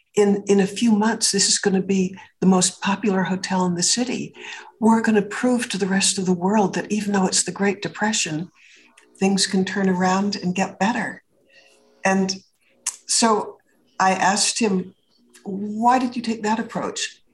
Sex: female